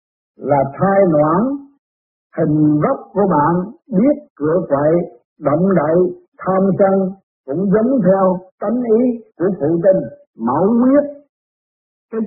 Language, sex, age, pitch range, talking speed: Vietnamese, male, 60-79, 145-205 Hz, 120 wpm